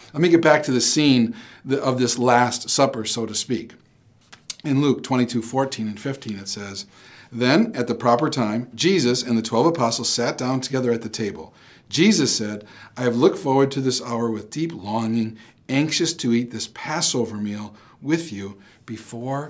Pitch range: 115-160 Hz